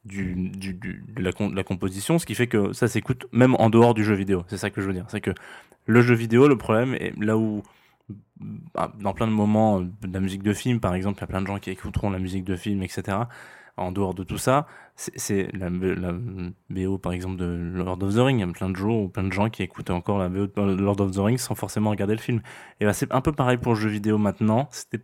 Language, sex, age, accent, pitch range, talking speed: French, male, 20-39, French, 95-125 Hz, 270 wpm